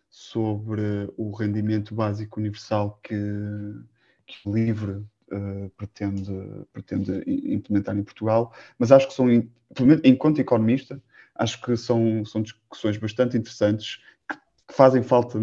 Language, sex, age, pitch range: Portuguese, male, 20-39, 105-125 Hz